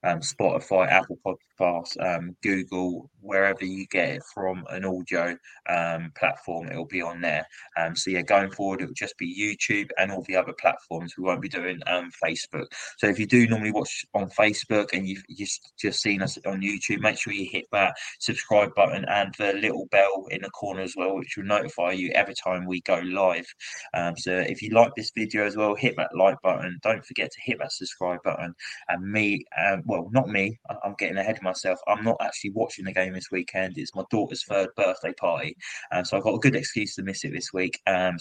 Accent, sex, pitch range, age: British, male, 90-105 Hz, 20-39